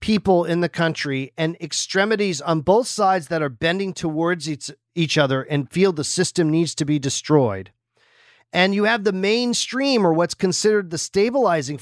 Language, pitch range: English, 165-235 Hz